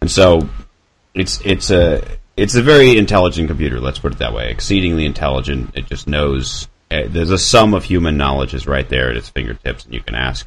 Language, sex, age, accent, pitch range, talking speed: English, male, 30-49, American, 70-95 Hz, 205 wpm